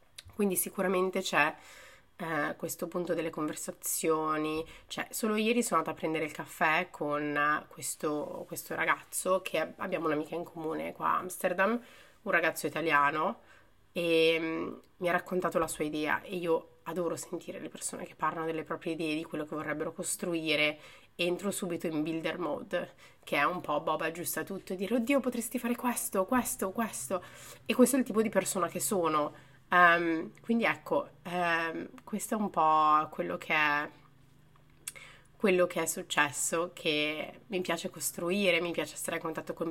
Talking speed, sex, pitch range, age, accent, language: 160 wpm, female, 155-185 Hz, 30-49, native, Italian